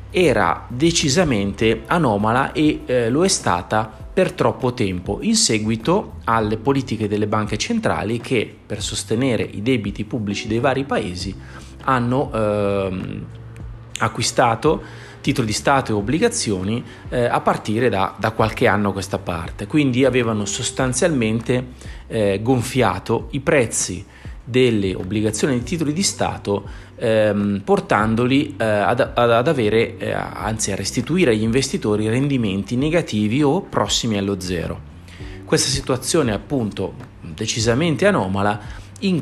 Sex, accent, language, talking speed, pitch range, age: male, native, Italian, 125 wpm, 100-130 Hz, 30-49